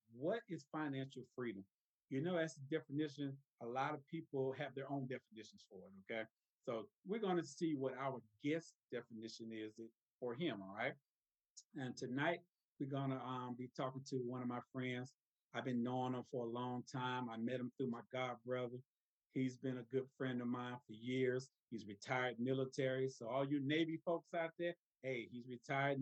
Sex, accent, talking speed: male, American, 190 wpm